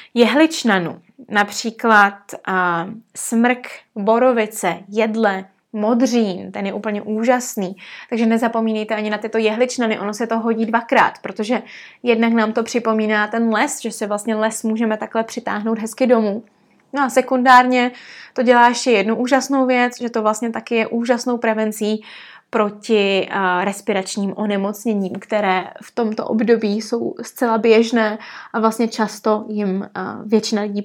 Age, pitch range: 20-39, 210-250 Hz